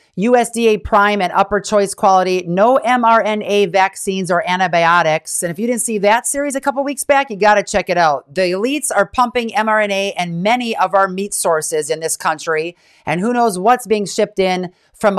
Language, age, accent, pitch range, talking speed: English, 40-59, American, 170-225 Hz, 200 wpm